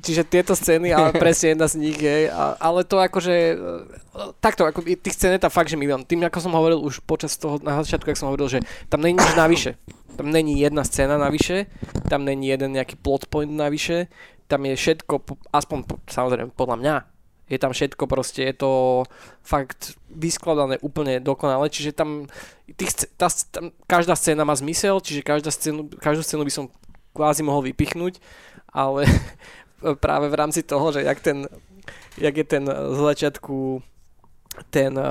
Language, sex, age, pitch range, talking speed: Slovak, male, 20-39, 140-160 Hz, 170 wpm